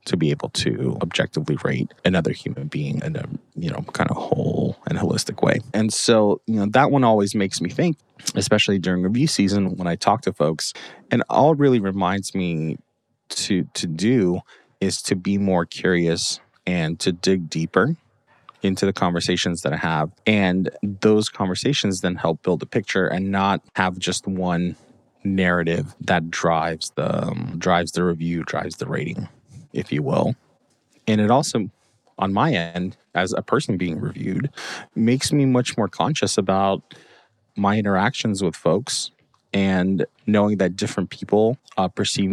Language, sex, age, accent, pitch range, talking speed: English, male, 30-49, American, 90-105 Hz, 165 wpm